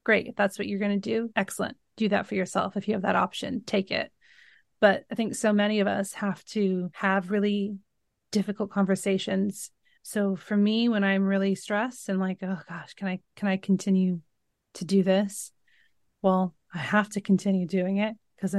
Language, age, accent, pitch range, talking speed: English, 30-49, American, 190-210 Hz, 190 wpm